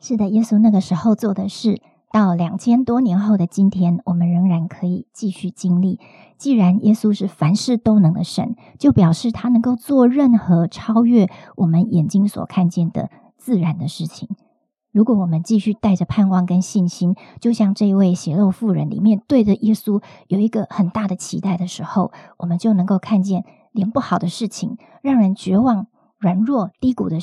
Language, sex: Chinese, male